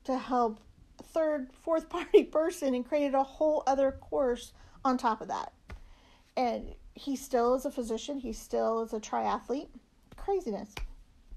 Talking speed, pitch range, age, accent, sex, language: 150 wpm, 225-265 Hz, 40-59, American, female, English